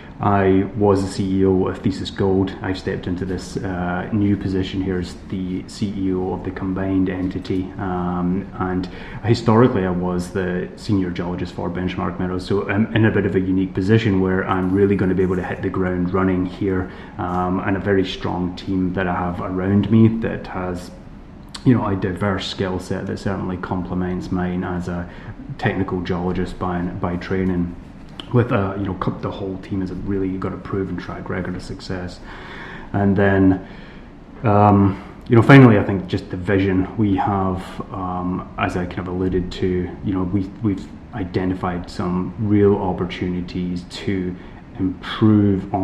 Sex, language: male, English